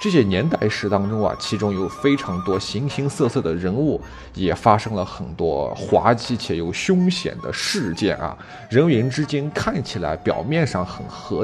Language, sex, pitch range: Chinese, male, 100-170 Hz